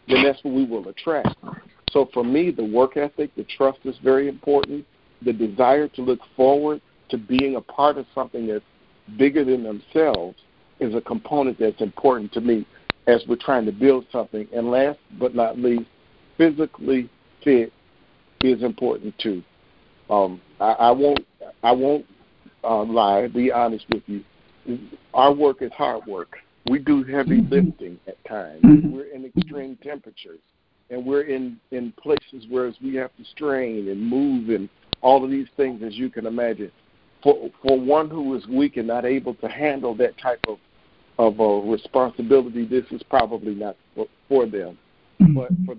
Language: English